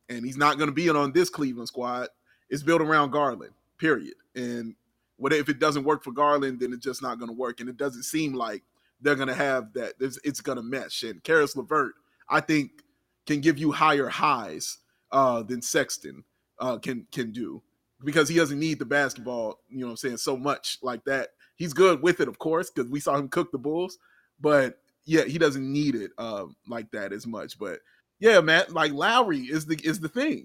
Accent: American